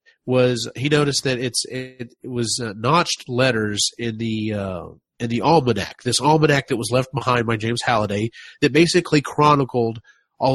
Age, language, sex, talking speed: 30-49, English, male, 165 wpm